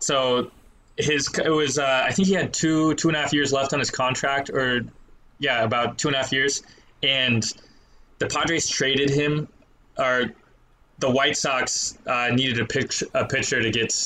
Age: 20-39